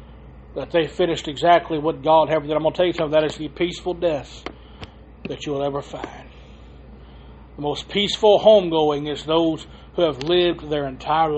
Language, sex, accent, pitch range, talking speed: English, male, American, 135-175 Hz, 185 wpm